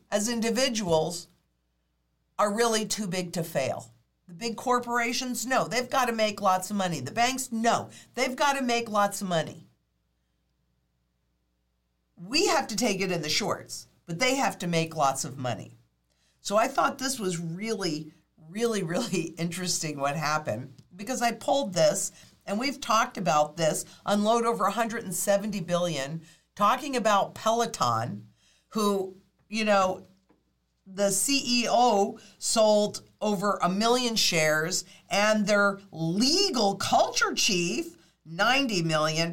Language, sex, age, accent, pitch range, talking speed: English, female, 50-69, American, 165-230 Hz, 135 wpm